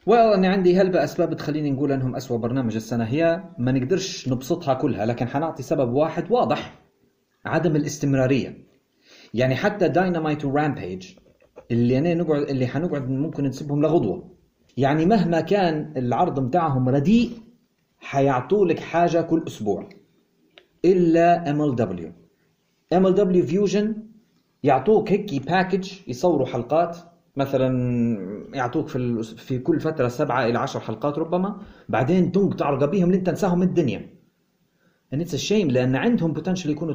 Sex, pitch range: male, 140-190 Hz